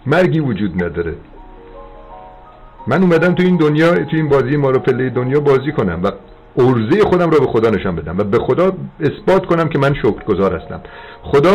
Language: Persian